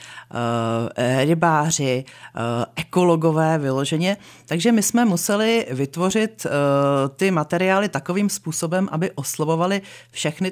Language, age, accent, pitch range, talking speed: Czech, 40-59, native, 130-165 Hz, 85 wpm